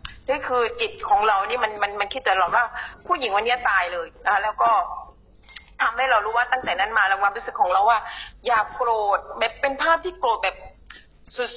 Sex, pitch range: female, 210-270 Hz